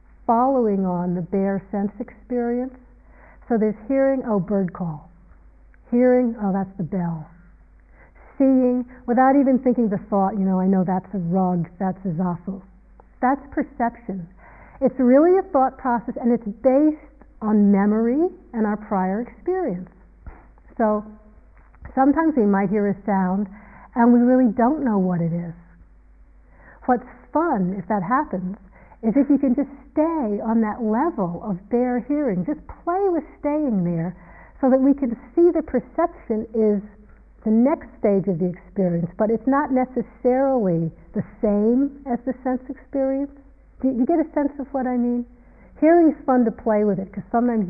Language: English